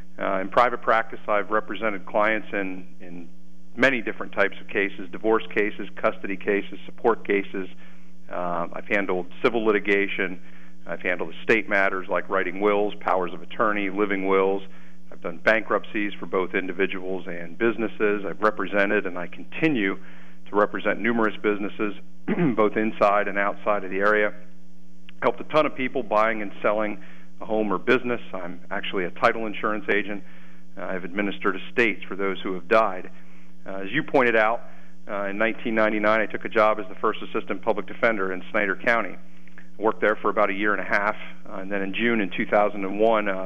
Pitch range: 85-105 Hz